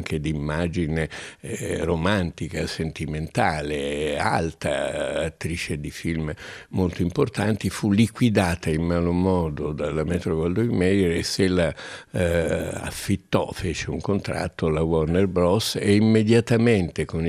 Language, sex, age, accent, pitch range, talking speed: Italian, male, 60-79, native, 80-100 Hz, 120 wpm